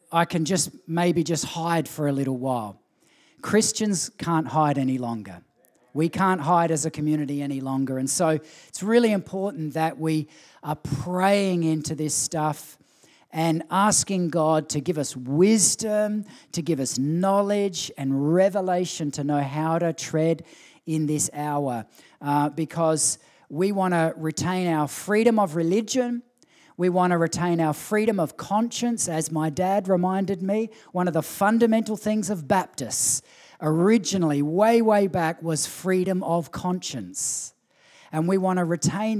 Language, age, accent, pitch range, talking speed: English, 40-59, Australian, 155-195 Hz, 150 wpm